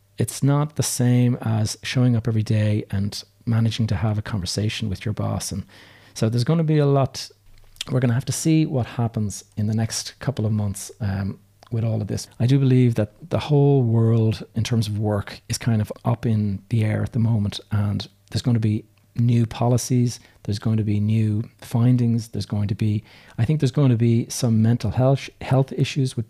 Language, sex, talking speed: English, male, 215 wpm